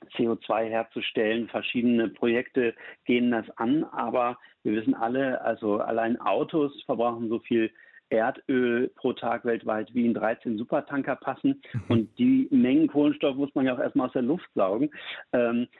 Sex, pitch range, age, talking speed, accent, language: male, 115-145 Hz, 50-69, 150 wpm, German, German